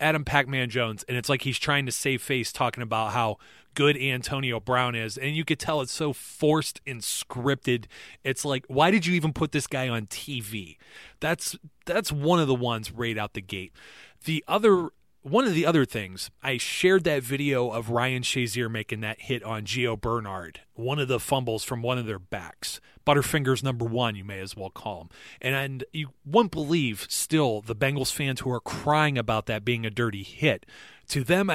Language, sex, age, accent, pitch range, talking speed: English, male, 30-49, American, 115-150 Hz, 205 wpm